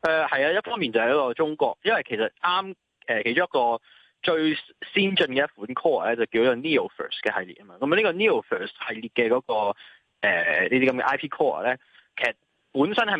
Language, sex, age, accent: Chinese, male, 20-39, native